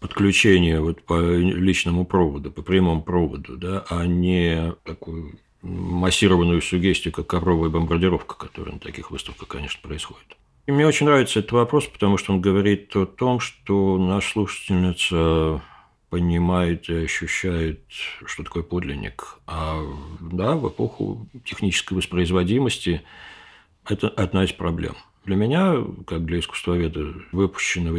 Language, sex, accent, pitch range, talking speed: Russian, male, native, 85-105 Hz, 130 wpm